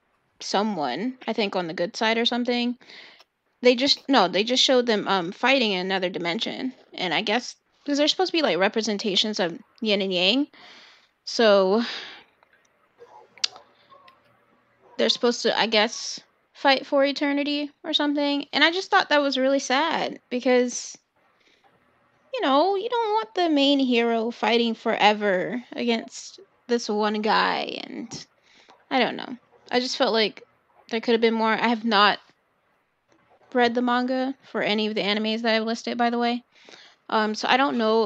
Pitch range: 215-285 Hz